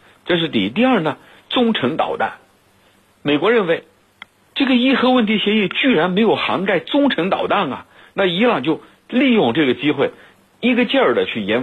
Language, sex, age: Chinese, male, 50-69